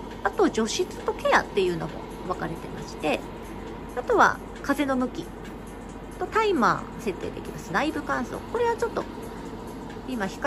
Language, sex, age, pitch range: Japanese, female, 40-59, 220-365 Hz